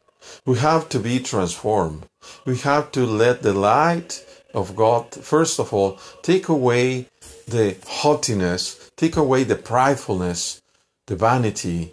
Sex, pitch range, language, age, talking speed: male, 95-150 Hz, Spanish, 50-69, 130 wpm